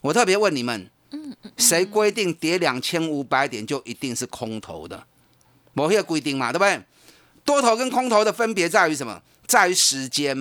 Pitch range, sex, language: 150-225 Hz, male, Chinese